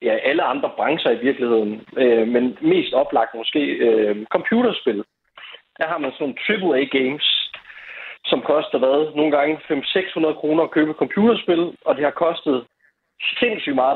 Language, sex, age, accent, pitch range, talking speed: Danish, male, 30-49, native, 130-200 Hz, 160 wpm